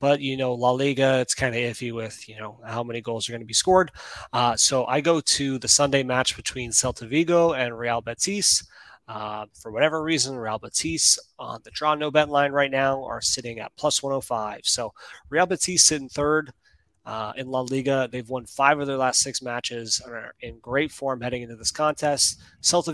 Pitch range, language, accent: 115-140 Hz, English, American